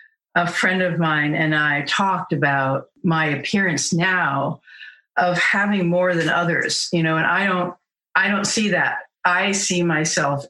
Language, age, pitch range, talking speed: English, 50-69, 155-200 Hz, 160 wpm